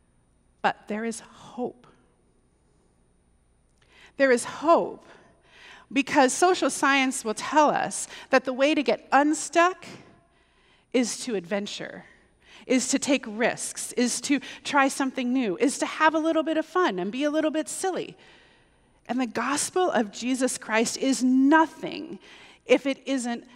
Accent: American